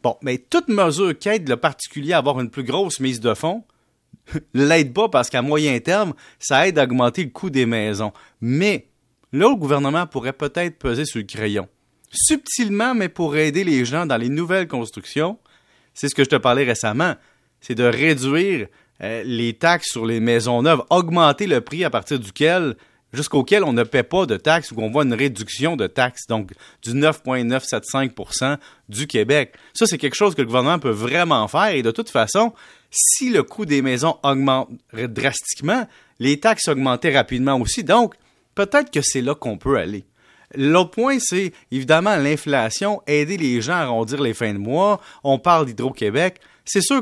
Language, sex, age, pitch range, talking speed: French, male, 30-49, 125-180 Hz, 185 wpm